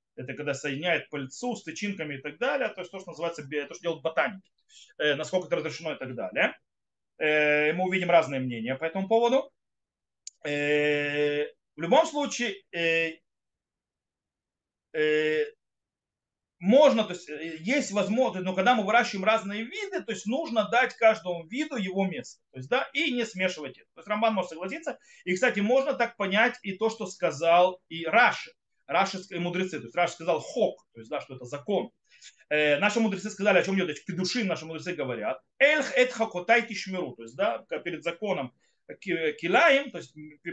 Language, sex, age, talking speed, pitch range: Russian, male, 30-49, 160 wpm, 165-240 Hz